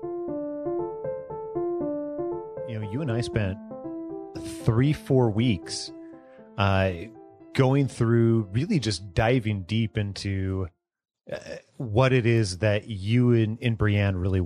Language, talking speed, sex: English, 110 wpm, male